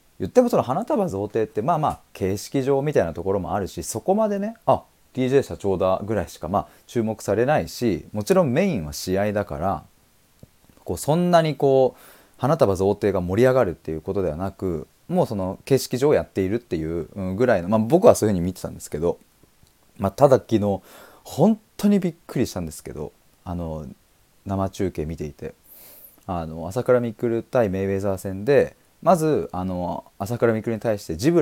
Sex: male